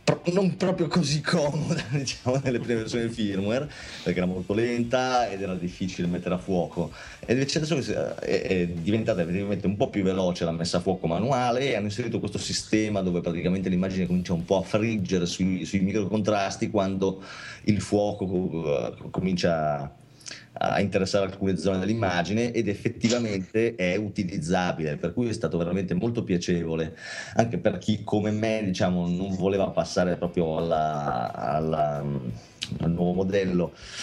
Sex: male